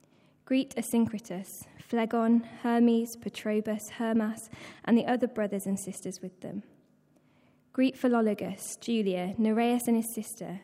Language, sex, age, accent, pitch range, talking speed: English, female, 10-29, British, 195-230 Hz, 120 wpm